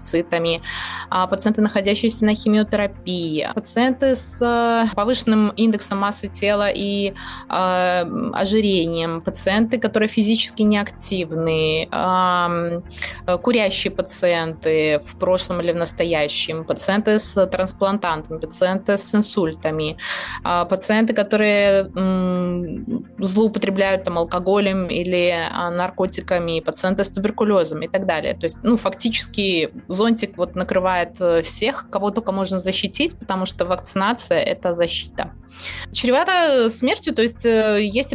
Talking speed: 100 wpm